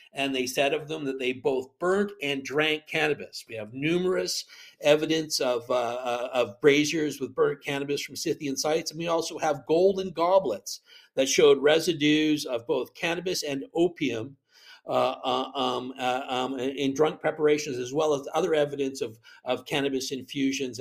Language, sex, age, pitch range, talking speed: English, male, 50-69, 130-160 Hz, 160 wpm